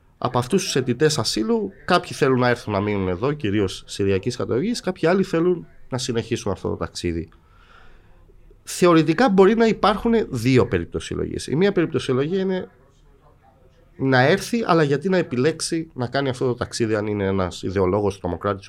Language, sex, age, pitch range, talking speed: Greek, male, 30-49, 95-125 Hz, 165 wpm